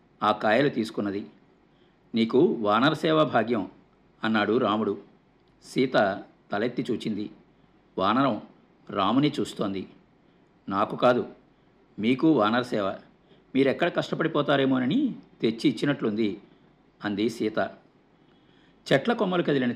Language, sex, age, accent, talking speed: Telugu, male, 50-69, native, 80 wpm